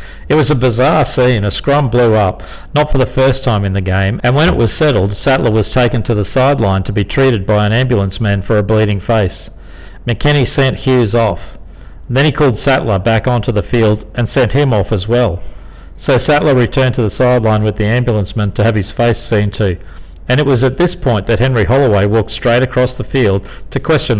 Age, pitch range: 50-69, 100-130 Hz